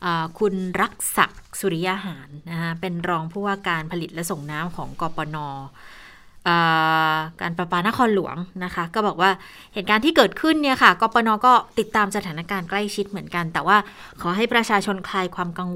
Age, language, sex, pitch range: 20-39, Thai, female, 165-210 Hz